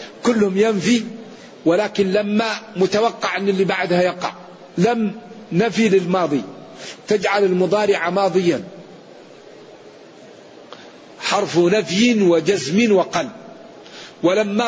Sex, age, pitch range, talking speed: male, 50-69, 180-210 Hz, 80 wpm